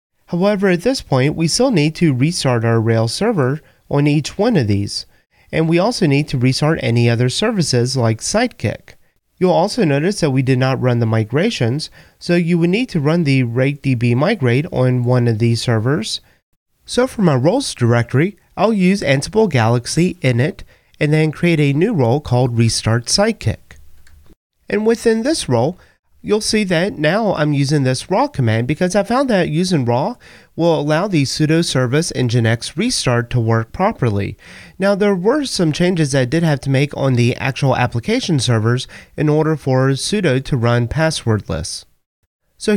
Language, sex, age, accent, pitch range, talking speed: English, male, 30-49, American, 125-175 Hz, 175 wpm